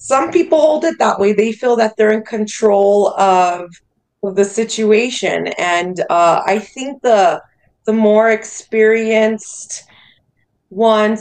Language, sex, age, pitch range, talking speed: English, female, 20-39, 195-245 Hz, 135 wpm